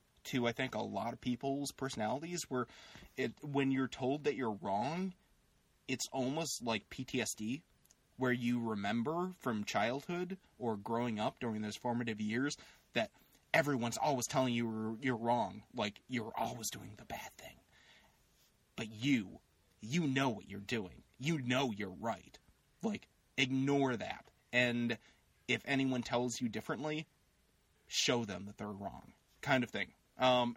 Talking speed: 145 wpm